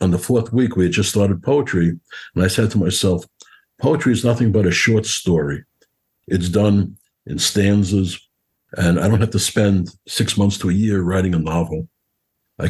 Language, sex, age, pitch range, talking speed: English, male, 60-79, 85-105 Hz, 190 wpm